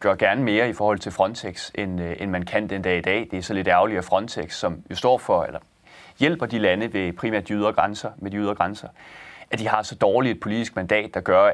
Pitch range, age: 95-115 Hz, 30-49